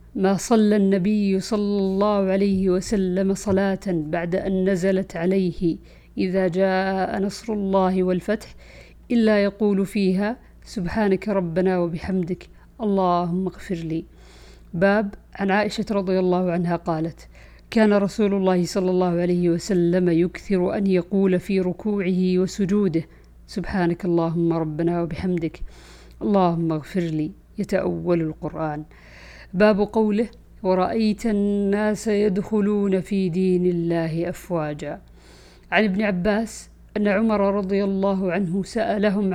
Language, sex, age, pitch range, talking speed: Arabic, female, 50-69, 175-200 Hz, 110 wpm